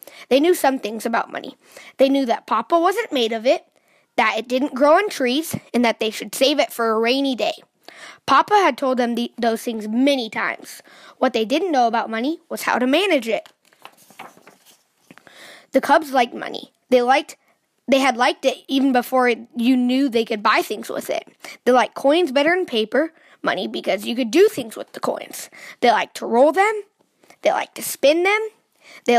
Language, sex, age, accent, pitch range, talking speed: English, female, 20-39, American, 235-315 Hz, 200 wpm